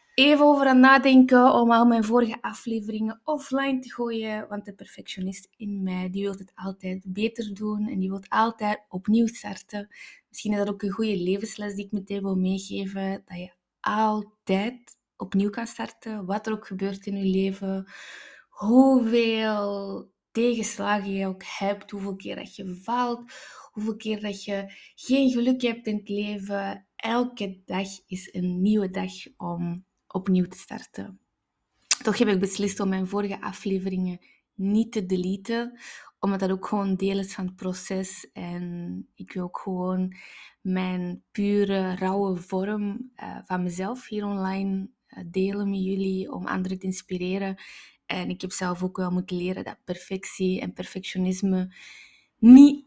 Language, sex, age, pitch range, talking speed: Dutch, female, 20-39, 190-220 Hz, 155 wpm